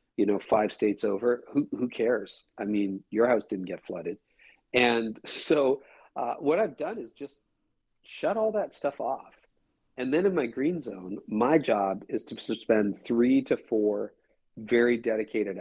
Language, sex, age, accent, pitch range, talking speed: English, male, 40-59, American, 105-145 Hz, 170 wpm